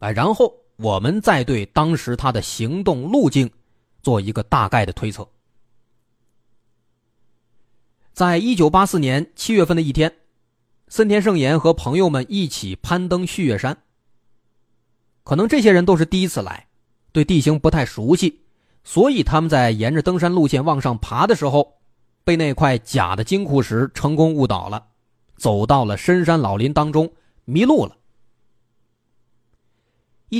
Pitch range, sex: 115-175 Hz, male